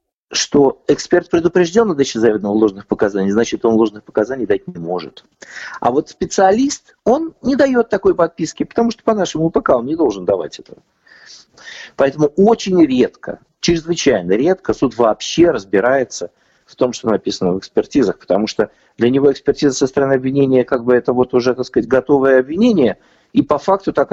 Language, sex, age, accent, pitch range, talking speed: Russian, male, 50-69, native, 110-170 Hz, 170 wpm